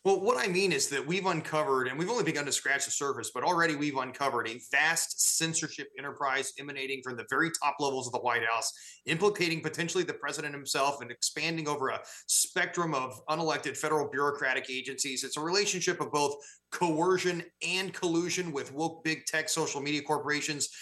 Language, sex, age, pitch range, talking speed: English, male, 30-49, 145-175 Hz, 185 wpm